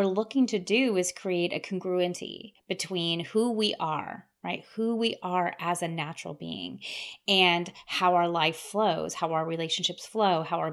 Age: 30-49